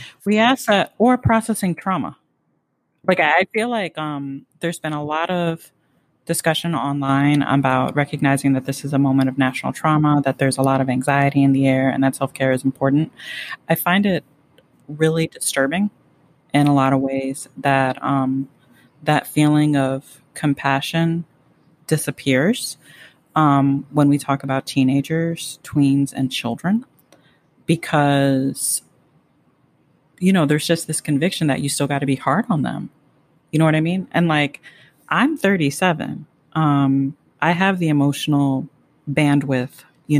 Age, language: 30-49, English